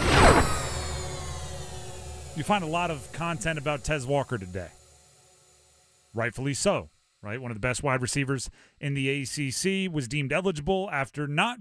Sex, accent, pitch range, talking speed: male, American, 120-165 Hz, 140 wpm